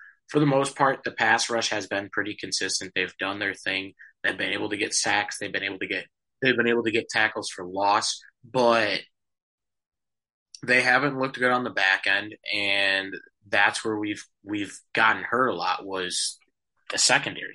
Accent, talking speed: American, 190 wpm